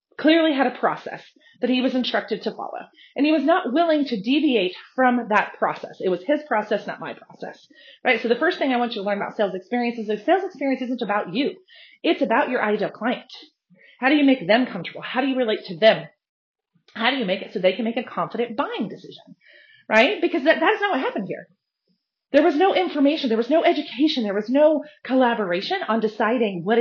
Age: 30-49